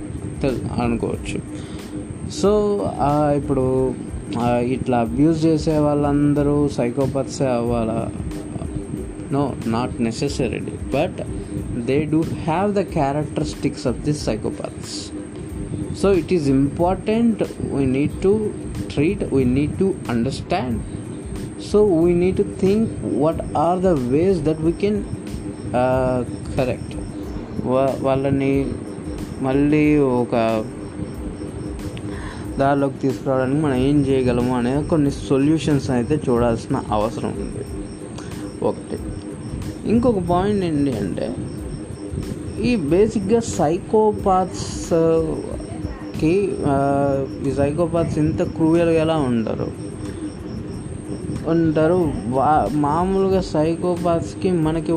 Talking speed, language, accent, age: 90 wpm, Telugu, native, 20-39